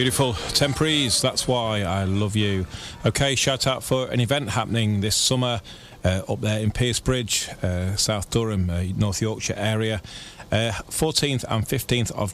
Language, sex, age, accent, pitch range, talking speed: English, male, 30-49, British, 95-120 Hz, 150 wpm